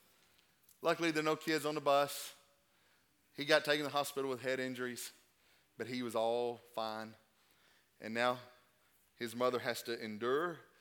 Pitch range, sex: 120-185 Hz, male